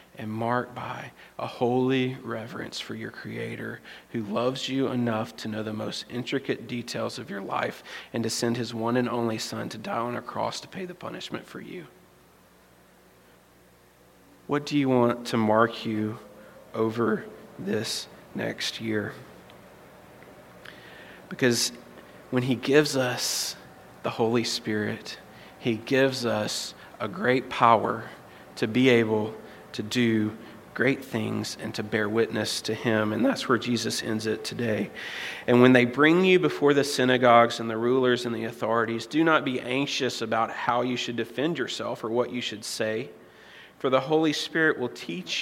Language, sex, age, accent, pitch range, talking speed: English, male, 30-49, American, 110-130 Hz, 160 wpm